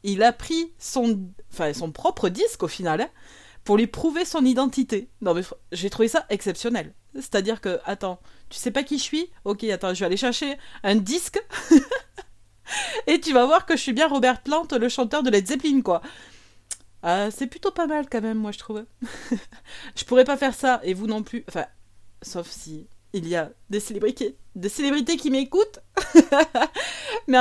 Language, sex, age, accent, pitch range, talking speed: French, female, 30-49, French, 205-280 Hz, 185 wpm